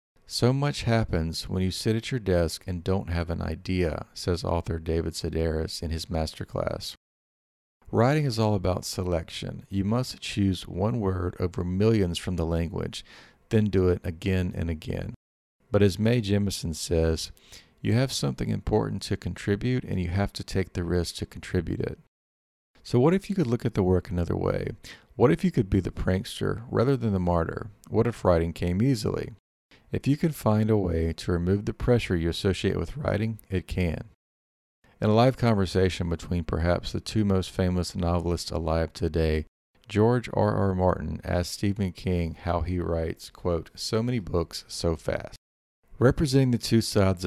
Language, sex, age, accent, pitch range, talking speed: English, male, 40-59, American, 85-110 Hz, 180 wpm